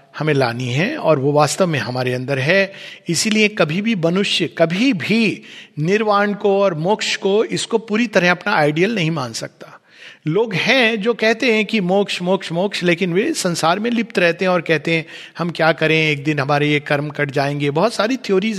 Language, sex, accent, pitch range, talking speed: Hindi, male, native, 170-235 Hz, 200 wpm